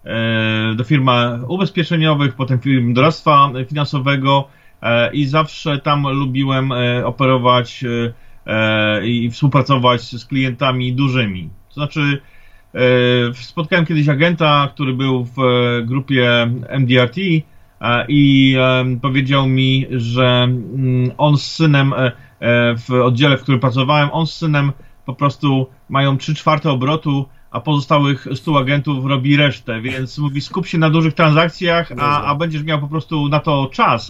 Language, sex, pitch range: Polish, male, 125-145 Hz